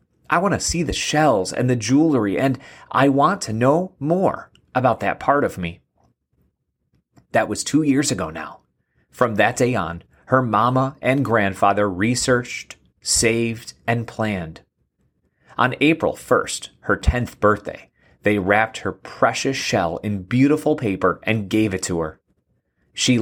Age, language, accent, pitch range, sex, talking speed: 30-49, English, American, 95-125 Hz, male, 150 wpm